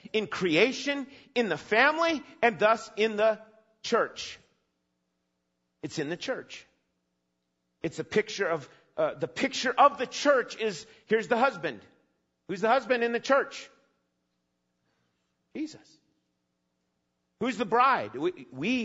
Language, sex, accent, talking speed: English, male, American, 125 wpm